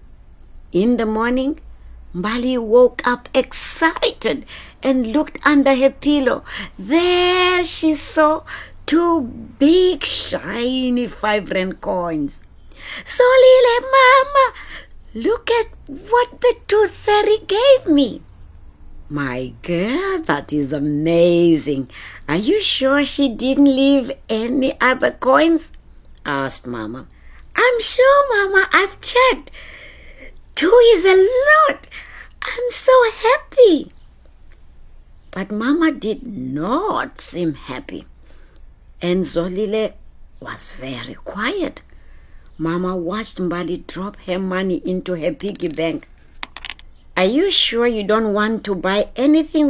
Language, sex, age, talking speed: English, female, 60-79, 105 wpm